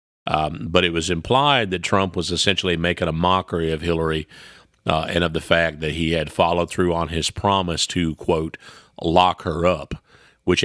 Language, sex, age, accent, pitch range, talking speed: English, male, 40-59, American, 80-100 Hz, 185 wpm